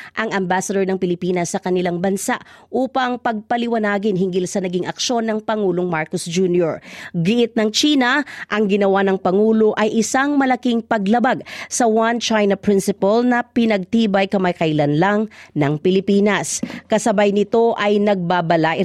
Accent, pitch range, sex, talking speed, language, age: native, 185-245 Hz, female, 135 wpm, Filipino, 40-59